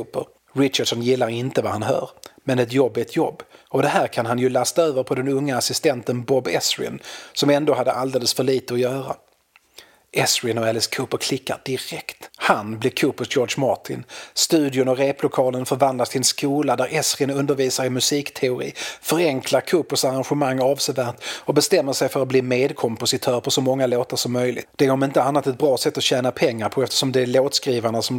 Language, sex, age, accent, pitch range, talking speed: Swedish, male, 30-49, native, 125-140 Hz, 195 wpm